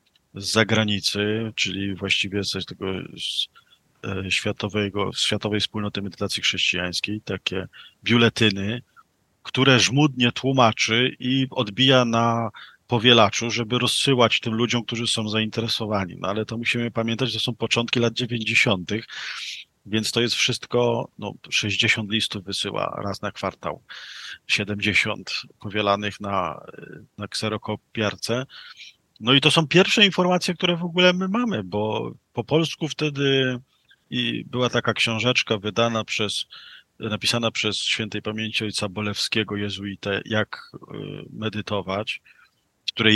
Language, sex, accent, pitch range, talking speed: Polish, male, native, 105-125 Hz, 120 wpm